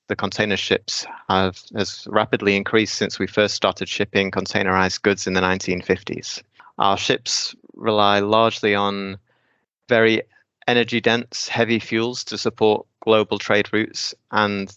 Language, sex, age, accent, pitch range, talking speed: English, male, 20-39, British, 95-115 Hz, 130 wpm